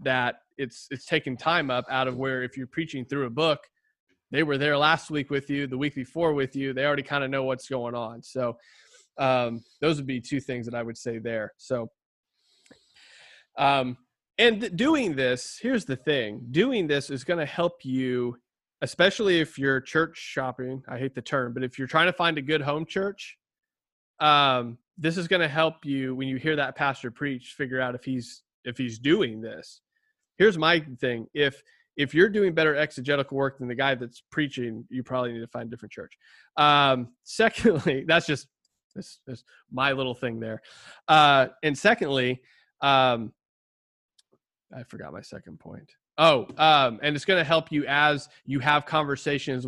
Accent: American